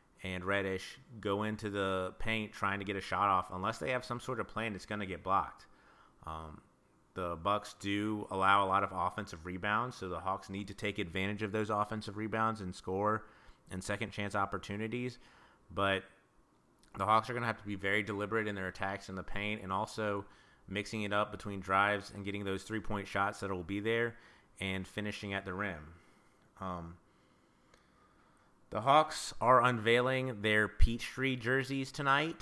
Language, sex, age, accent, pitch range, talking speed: English, male, 30-49, American, 95-110 Hz, 180 wpm